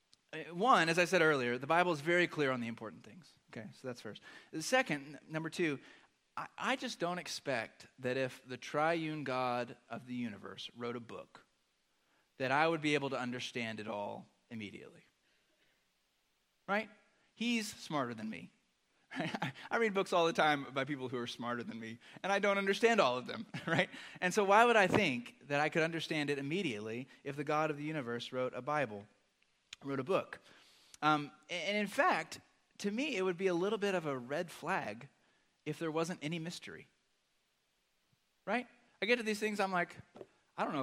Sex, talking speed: male, 195 wpm